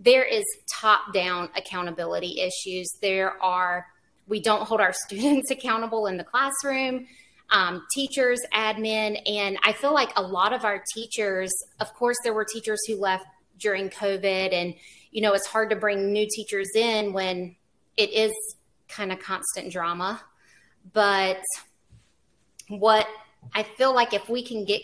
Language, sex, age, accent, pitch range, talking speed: English, female, 30-49, American, 190-230 Hz, 150 wpm